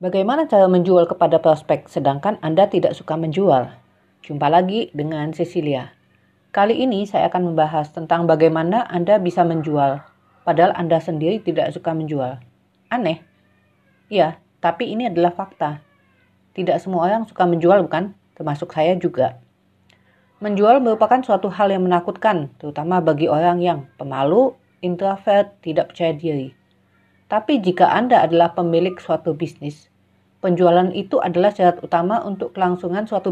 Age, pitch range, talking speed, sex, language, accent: 40-59, 155-185 Hz, 135 wpm, female, Indonesian, native